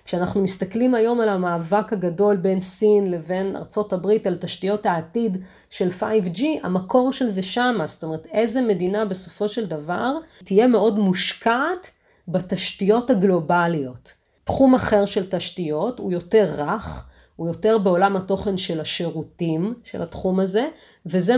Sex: female